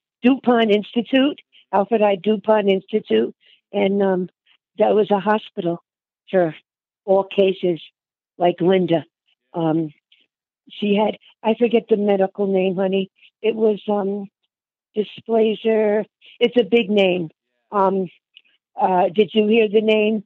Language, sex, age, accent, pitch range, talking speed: English, female, 50-69, American, 175-215 Hz, 120 wpm